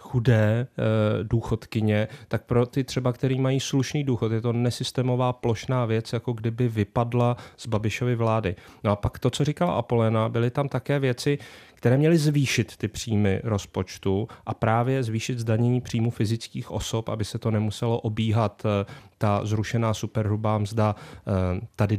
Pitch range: 105-125 Hz